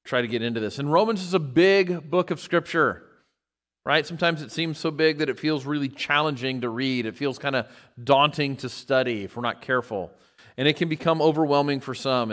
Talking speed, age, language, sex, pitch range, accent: 215 wpm, 40-59, English, male, 115-155 Hz, American